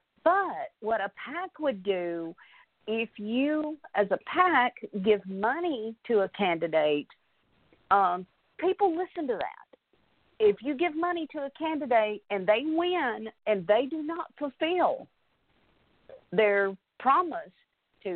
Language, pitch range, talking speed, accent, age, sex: English, 195-275 Hz, 130 wpm, American, 50-69, female